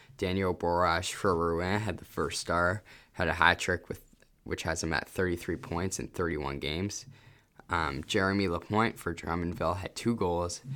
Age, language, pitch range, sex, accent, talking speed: 10-29, English, 85-105 Hz, male, American, 160 wpm